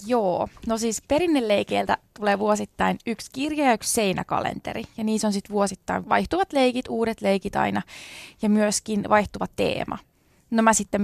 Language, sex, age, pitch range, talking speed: Finnish, female, 20-39, 200-255 Hz, 150 wpm